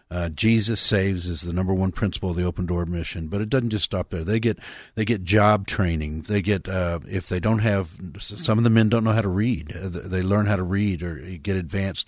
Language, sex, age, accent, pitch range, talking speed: English, male, 40-59, American, 90-105 Hz, 240 wpm